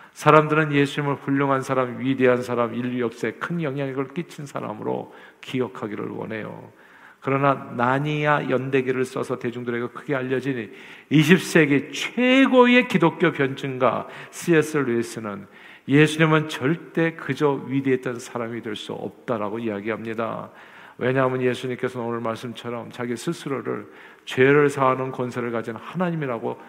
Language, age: Korean, 50-69